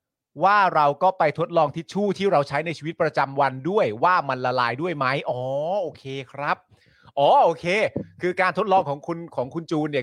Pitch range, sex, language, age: 125-175 Hz, male, Thai, 30-49